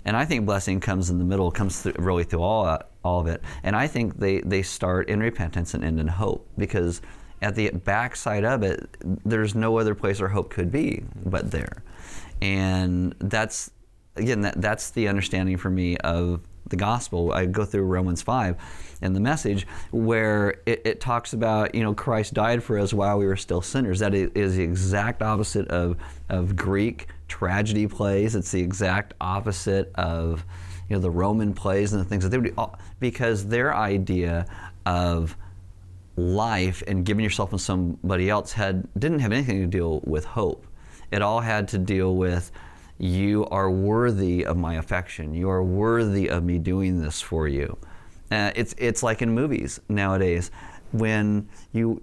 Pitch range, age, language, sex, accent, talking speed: 90-105 Hz, 30-49, English, male, American, 180 wpm